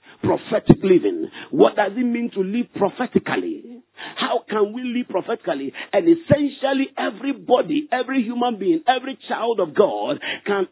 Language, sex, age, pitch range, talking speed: English, male, 50-69, 205-315 Hz, 140 wpm